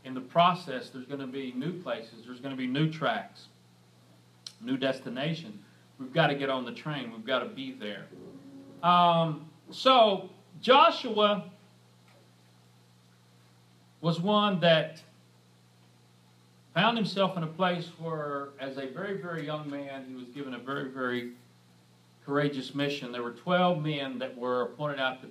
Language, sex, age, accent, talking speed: English, male, 40-59, American, 150 wpm